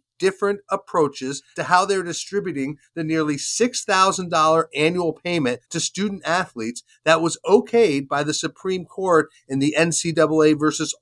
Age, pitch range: 30-49, 145-185 Hz